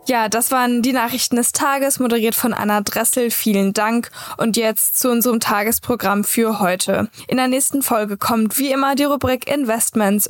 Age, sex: 10-29, female